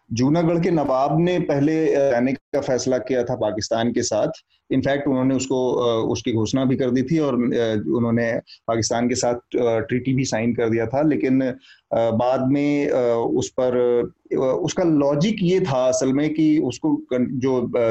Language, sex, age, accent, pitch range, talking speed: Hindi, male, 30-49, native, 125-155 Hz, 155 wpm